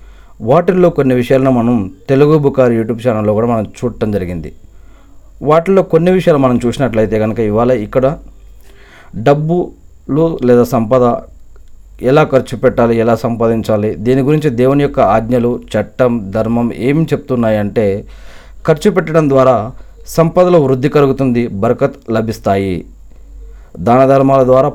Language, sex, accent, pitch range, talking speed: Telugu, male, native, 105-140 Hz, 120 wpm